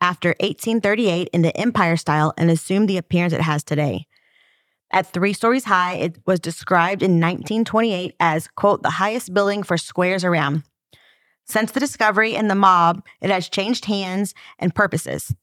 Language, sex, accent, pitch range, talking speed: English, female, American, 175-205 Hz, 165 wpm